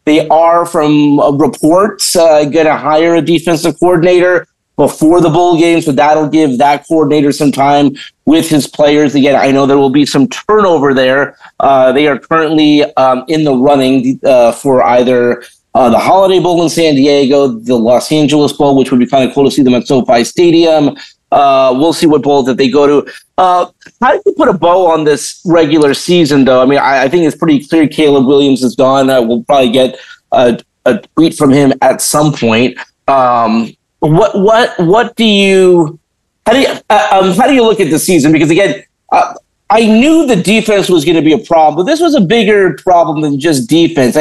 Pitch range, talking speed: 140-180 Hz, 210 wpm